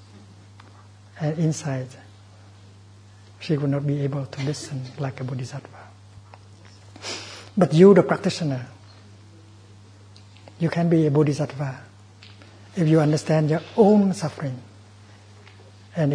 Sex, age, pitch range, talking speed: male, 60-79, 105-150 Hz, 105 wpm